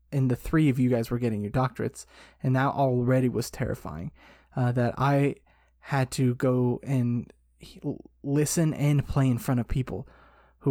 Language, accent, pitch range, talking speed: English, American, 120-140 Hz, 175 wpm